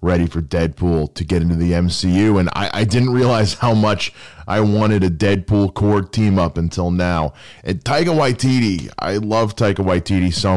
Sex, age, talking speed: male, 20-39, 180 wpm